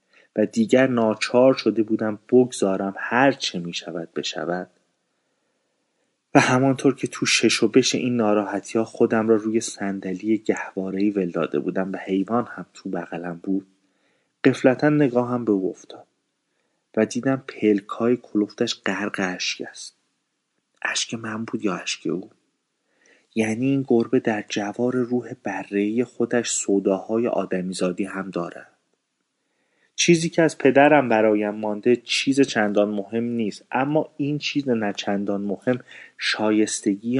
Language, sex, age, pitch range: Persian, male, 30-49, 100-125 Hz